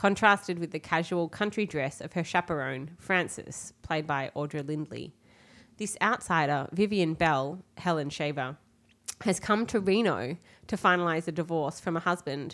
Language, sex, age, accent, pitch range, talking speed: English, female, 20-39, Australian, 155-195 Hz, 150 wpm